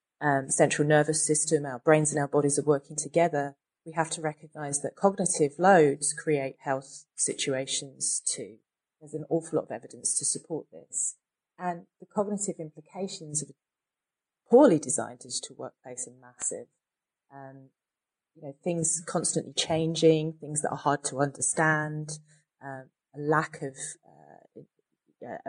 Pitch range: 140-160 Hz